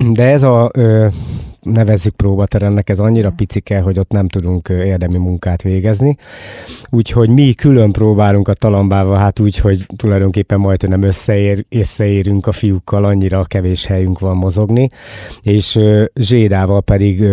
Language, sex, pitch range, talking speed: Hungarian, male, 95-110 Hz, 135 wpm